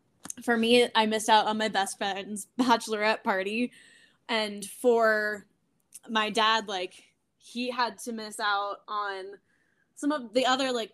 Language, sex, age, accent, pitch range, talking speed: English, female, 10-29, American, 210-245 Hz, 150 wpm